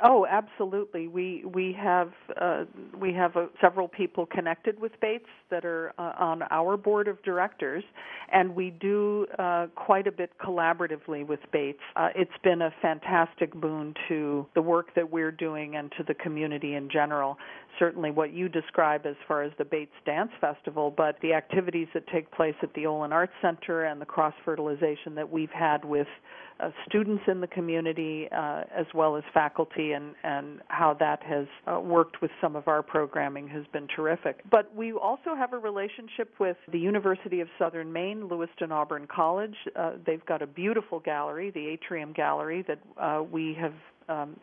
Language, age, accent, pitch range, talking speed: English, 50-69, American, 155-185 Hz, 180 wpm